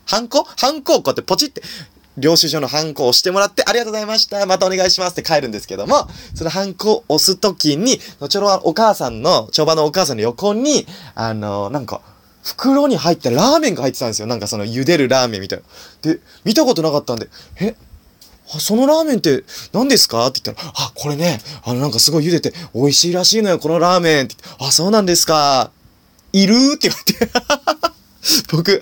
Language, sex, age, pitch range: Japanese, male, 20-39, 125-195 Hz